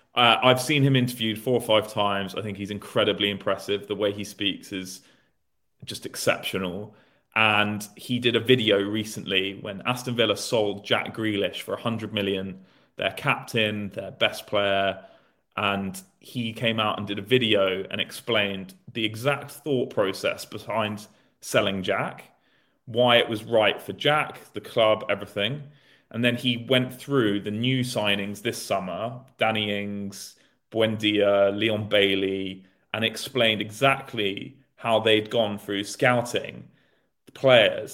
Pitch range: 100-125 Hz